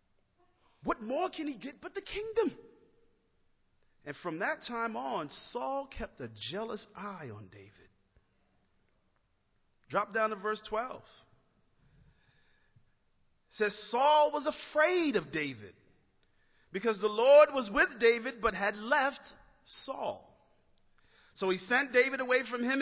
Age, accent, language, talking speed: 40-59, American, English, 130 wpm